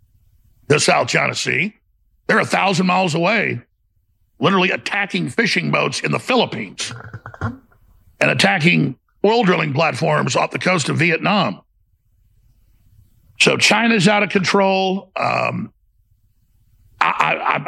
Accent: American